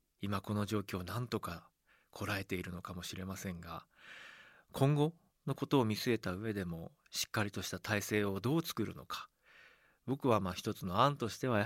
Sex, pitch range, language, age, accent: male, 100-145 Hz, Japanese, 40-59, native